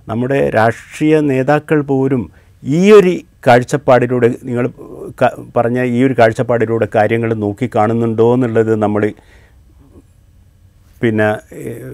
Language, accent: Malayalam, native